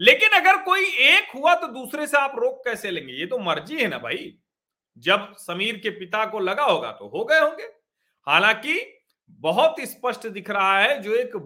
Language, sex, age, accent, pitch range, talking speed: Hindi, male, 40-59, native, 180-265 Hz, 195 wpm